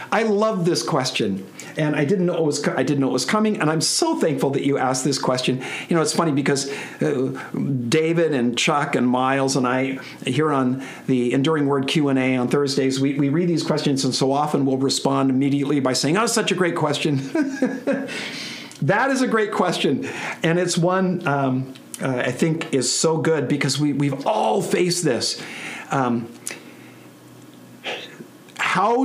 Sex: male